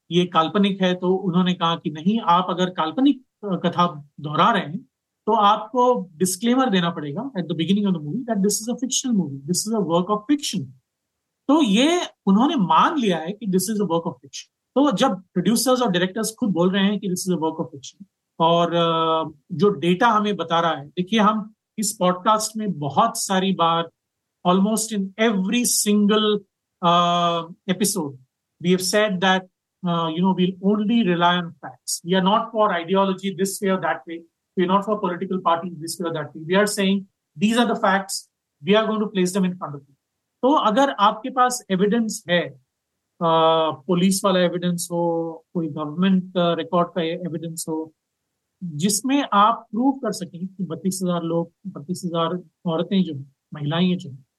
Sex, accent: male, native